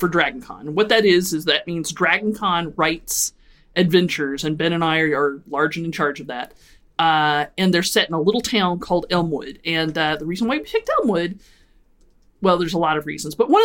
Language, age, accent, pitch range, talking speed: English, 30-49, American, 160-200 Hz, 230 wpm